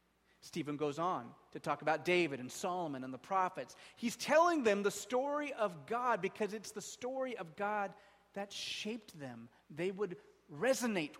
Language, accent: English, American